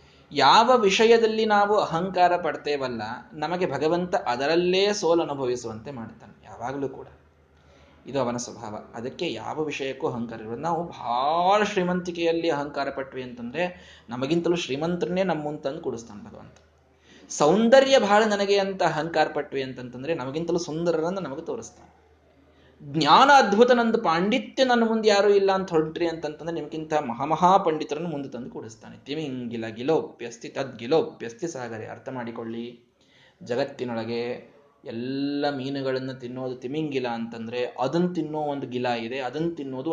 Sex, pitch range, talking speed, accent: male, 120-170 Hz, 120 wpm, native